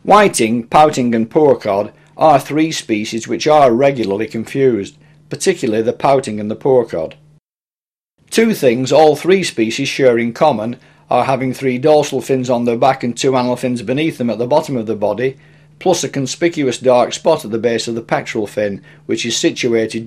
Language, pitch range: English, 115-150 Hz